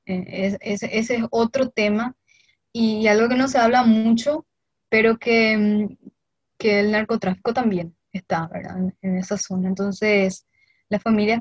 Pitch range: 205-230 Hz